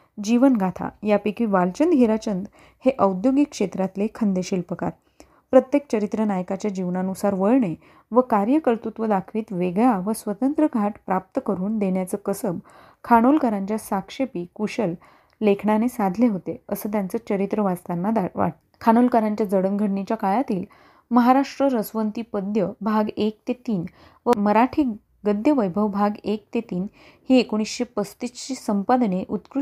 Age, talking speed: 30-49, 100 wpm